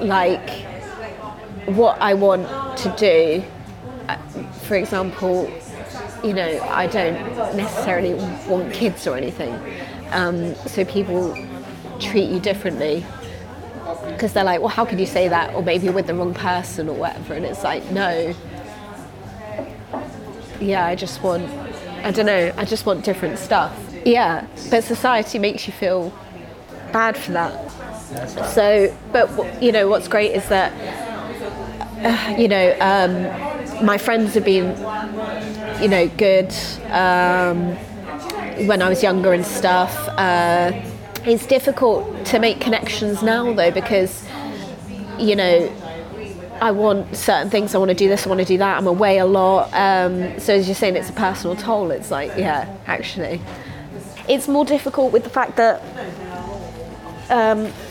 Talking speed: 145 wpm